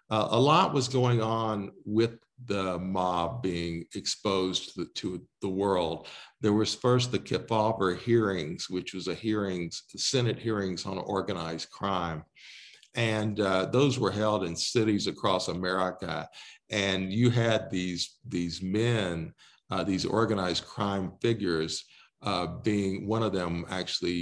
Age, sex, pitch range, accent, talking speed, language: 50-69, male, 90-115 Hz, American, 140 wpm, English